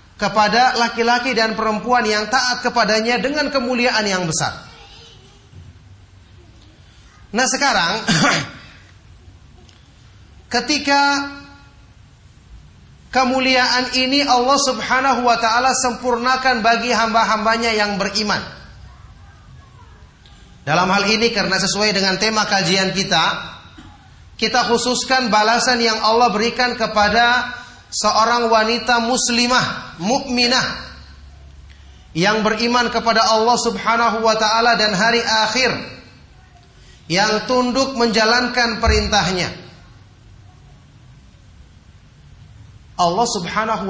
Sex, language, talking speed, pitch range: male, Indonesian, 85 wpm, 165-240 Hz